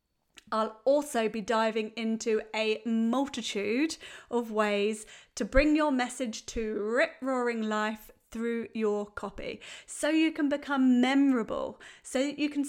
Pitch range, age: 220-275 Hz, 30-49